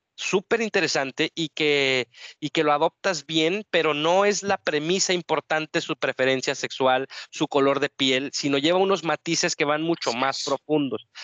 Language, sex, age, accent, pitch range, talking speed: Spanish, male, 30-49, Mexican, 135-160 Hz, 165 wpm